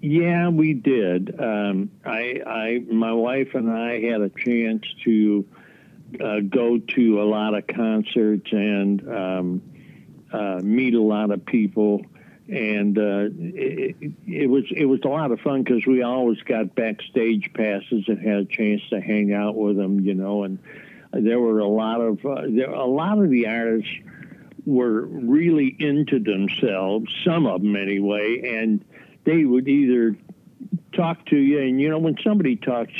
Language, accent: English, American